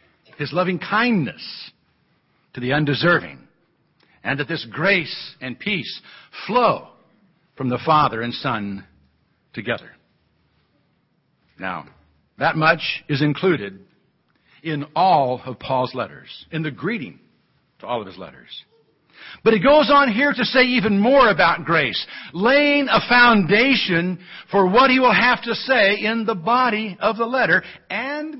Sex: male